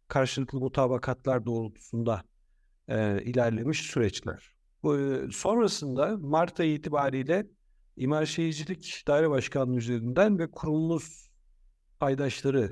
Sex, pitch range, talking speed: male, 115-155 Hz, 95 wpm